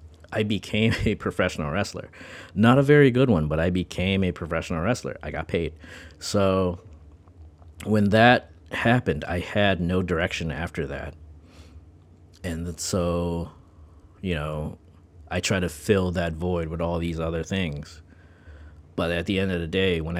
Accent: American